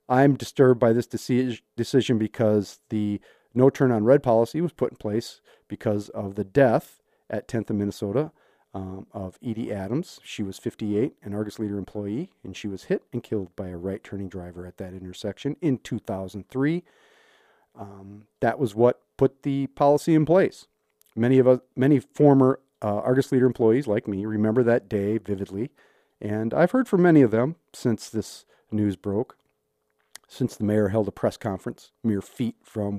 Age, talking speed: 40-59, 170 wpm